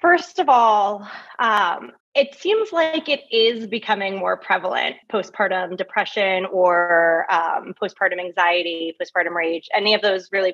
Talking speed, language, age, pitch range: 135 wpm, English, 20-39, 200-265 Hz